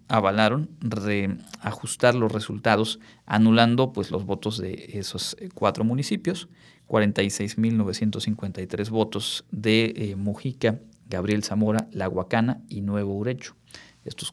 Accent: Mexican